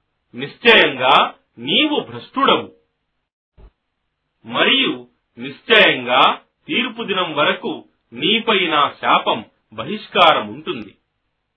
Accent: native